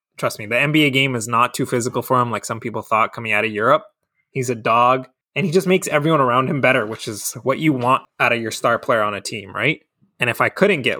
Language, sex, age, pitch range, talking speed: English, male, 20-39, 120-145 Hz, 265 wpm